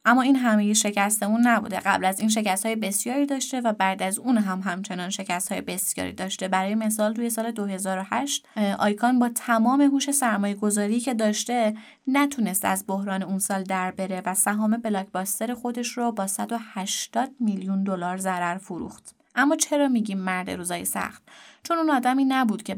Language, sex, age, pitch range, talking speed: Persian, female, 20-39, 195-235 Hz, 170 wpm